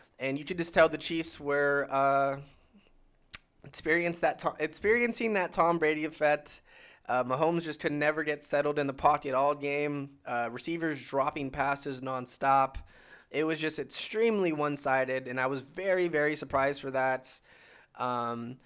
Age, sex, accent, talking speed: 20-39, male, American, 145 wpm